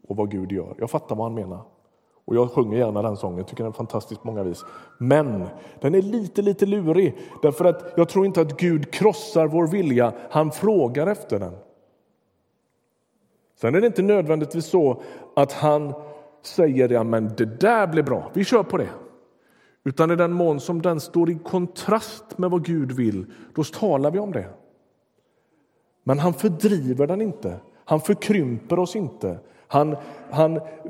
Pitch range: 140-185 Hz